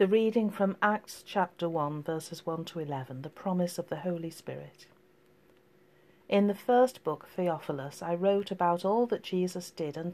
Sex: female